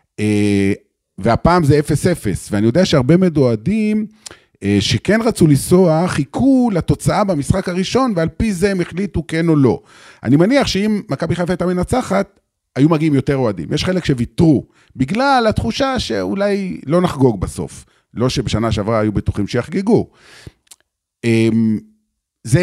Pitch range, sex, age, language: 110-180 Hz, male, 40-59, Hebrew